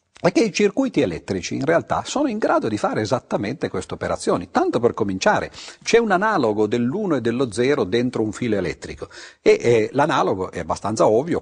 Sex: male